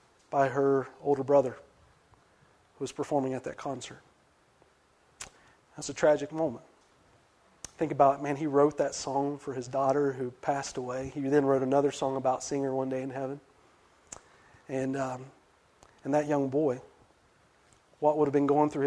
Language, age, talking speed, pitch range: English, 40-59, 165 wpm, 140-170 Hz